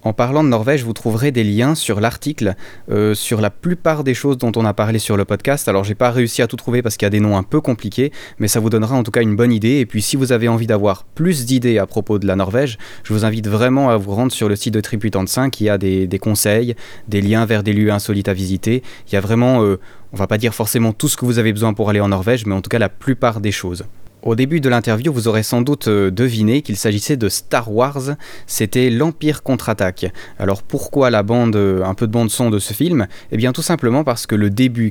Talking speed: 265 wpm